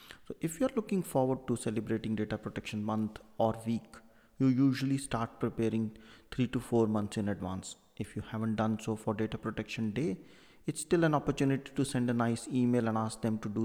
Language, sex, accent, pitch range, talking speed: English, male, Indian, 110-125 Hz, 200 wpm